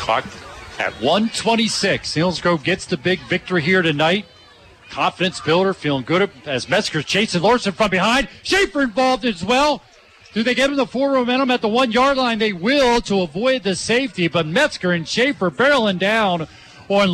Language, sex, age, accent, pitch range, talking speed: English, male, 40-59, American, 145-195 Hz, 170 wpm